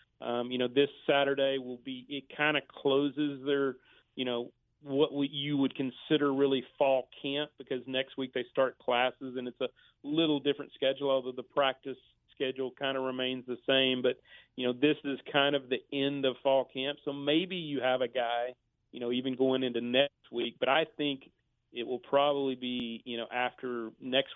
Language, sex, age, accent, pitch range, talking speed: English, male, 40-59, American, 125-145 Hz, 190 wpm